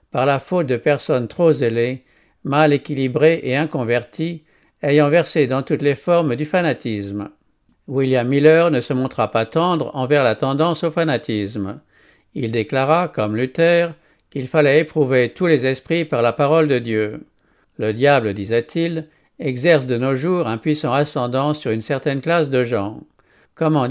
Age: 60-79